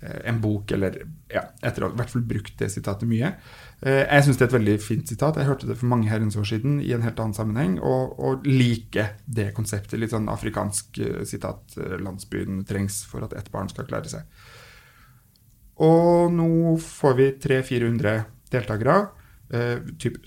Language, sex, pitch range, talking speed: English, male, 110-135 Hz, 180 wpm